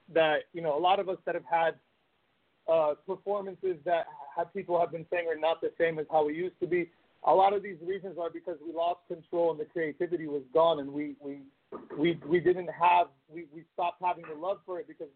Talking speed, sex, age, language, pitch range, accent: 235 wpm, male, 30-49, English, 160-190 Hz, American